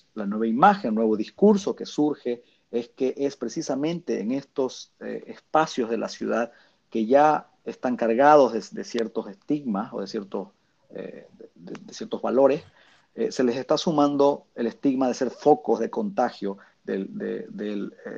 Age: 40-59